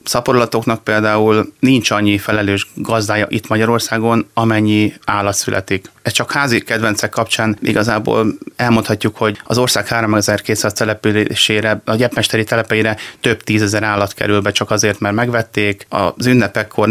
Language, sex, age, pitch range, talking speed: Hungarian, male, 30-49, 105-115 Hz, 130 wpm